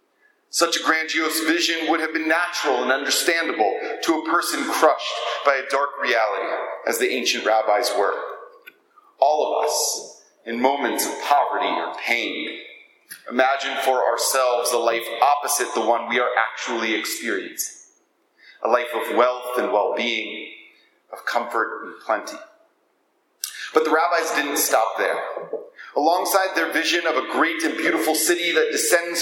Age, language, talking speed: 40-59, English, 145 wpm